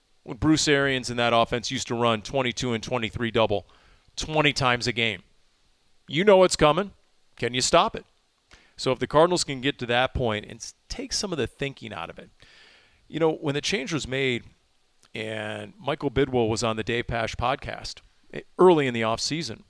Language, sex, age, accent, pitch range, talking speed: English, male, 40-59, American, 115-155 Hz, 190 wpm